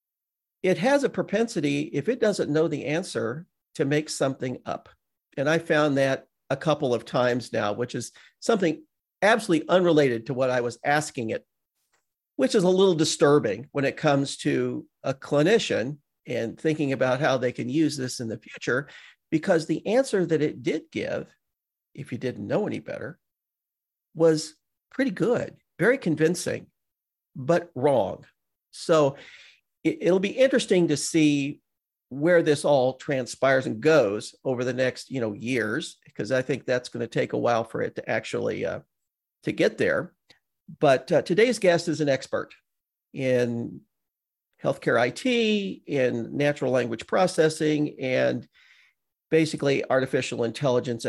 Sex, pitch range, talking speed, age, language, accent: male, 130-170 Hz, 150 wpm, 50-69, English, American